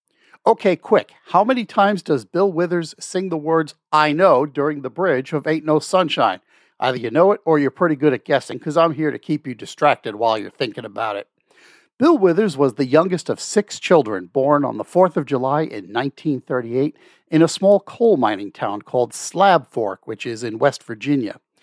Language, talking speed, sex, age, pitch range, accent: English, 200 wpm, male, 50-69, 130-170 Hz, American